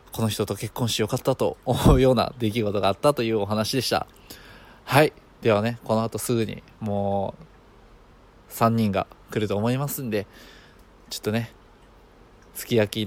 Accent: native